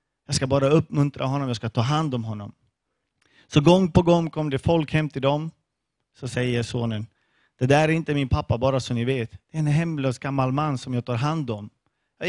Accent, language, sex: Swedish, English, male